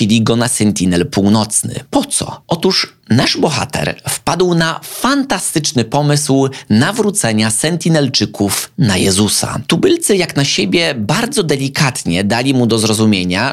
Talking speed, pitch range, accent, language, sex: 120 wpm, 100-140 Hz, native, Polish, male